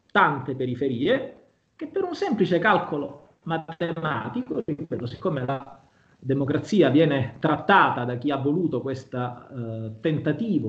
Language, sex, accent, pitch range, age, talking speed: Italian, male, native, 125-185 Hz, 30-49, 120 wpm